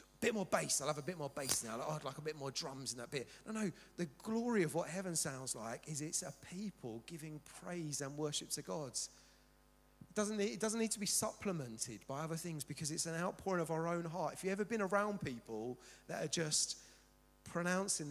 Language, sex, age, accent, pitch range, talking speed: English, male, 30-49, British, 145-210 Hz, 225 wpm